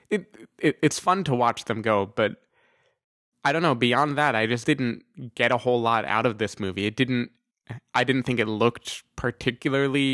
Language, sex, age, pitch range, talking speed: English, male, 20-39, 110-130 Hz, 195 wpm